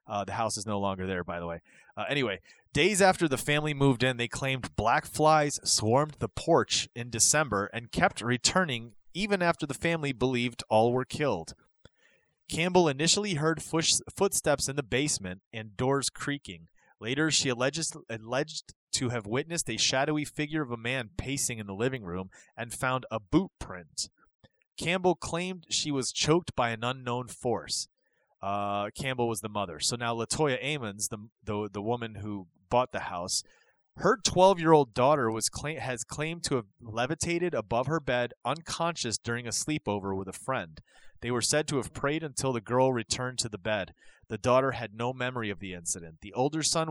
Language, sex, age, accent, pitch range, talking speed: English, male, 30-49, American, 110-150 Hz, 185 wpm